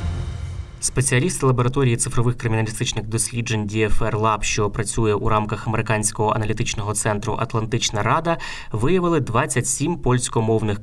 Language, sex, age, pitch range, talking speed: Ukrainian, male, 20-39, 110-130 Hz, 105 wpm